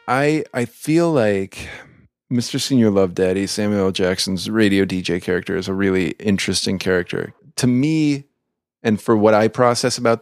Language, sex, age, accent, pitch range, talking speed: English, male, 30-49, American, 95-130 Hz, 160 wpm